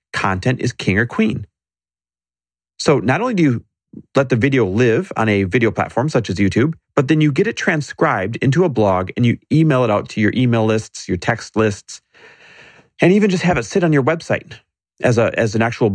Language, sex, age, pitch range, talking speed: English, male, 30-49, 100-160 Hz, 205 wpm